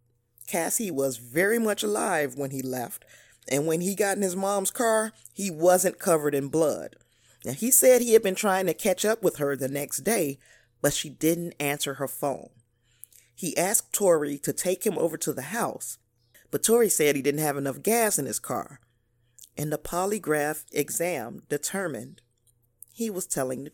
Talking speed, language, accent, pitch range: 180 wpm, English, American, 125-180 Hz